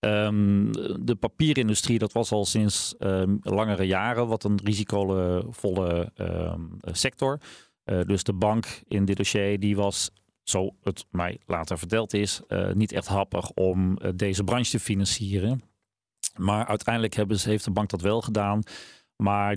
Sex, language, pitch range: male, Dutch, 100-115 Hz